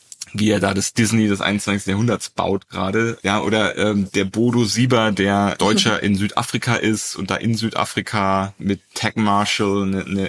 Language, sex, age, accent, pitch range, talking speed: German, male, 30-49, German, 95-110 Hz, 175 wpm